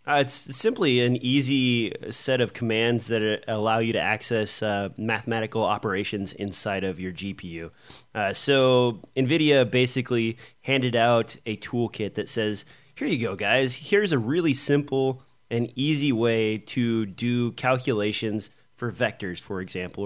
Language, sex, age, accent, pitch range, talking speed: English, male, 30-49, American, 110-130 Hz, 145 wpm